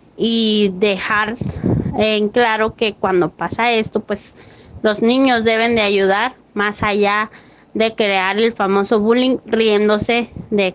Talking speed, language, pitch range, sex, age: 130 wpm, Spanish, 205-235 Hz, female, 20-39